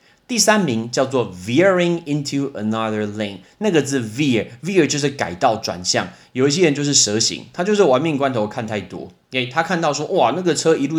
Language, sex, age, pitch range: Chinese, male, 30-49, 115-145 Hz